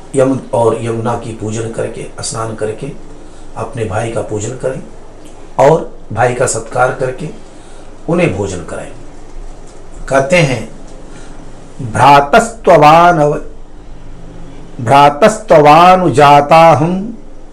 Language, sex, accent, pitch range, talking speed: Hindi, male, native, 130-165 Hz, 80 wpm